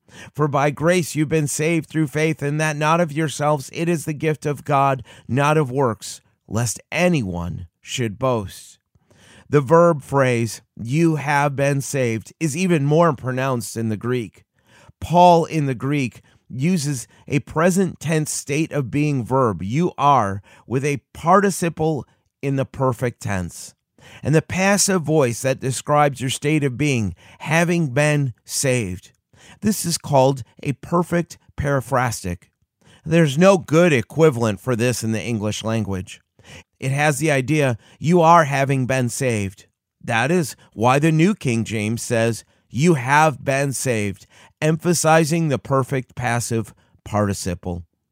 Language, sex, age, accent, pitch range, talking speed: English, male, 30-49, American, 115-155 Hz, 145 wpm